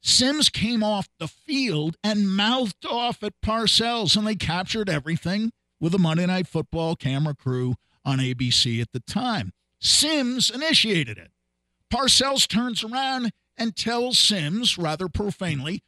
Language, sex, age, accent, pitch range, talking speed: English, male, 50-69, American, 125-195 Hz, 140 wpm